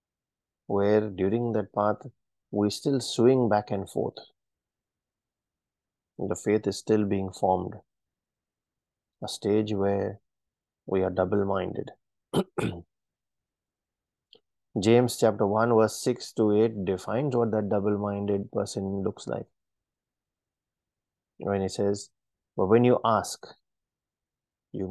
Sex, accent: male, Indian